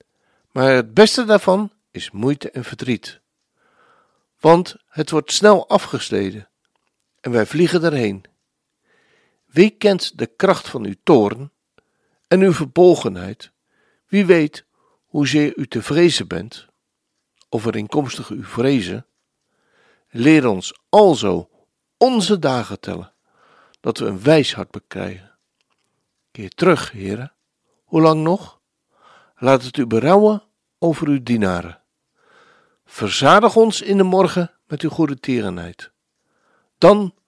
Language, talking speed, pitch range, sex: Dutch, 120 wpm, 115-190 Hz, male